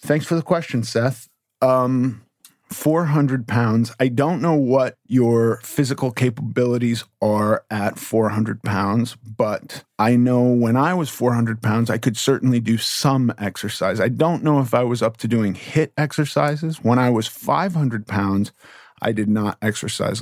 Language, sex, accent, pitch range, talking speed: English, male, American, 110-130 Hz, 155 wpm